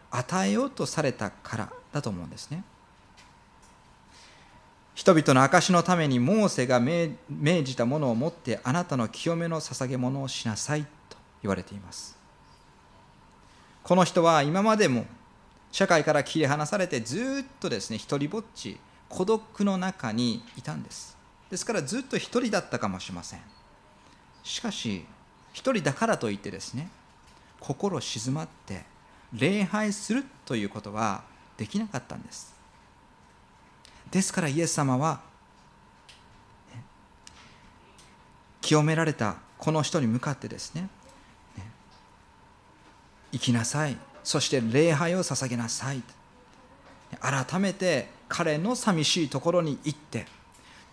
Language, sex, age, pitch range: Japanese, male, 40-59, 120-180 Hz